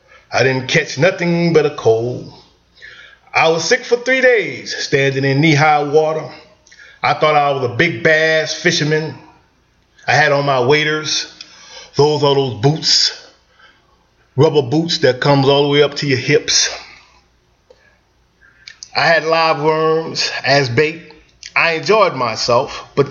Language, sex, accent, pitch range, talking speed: English, male, American, 140-170 Hz, 145 wpm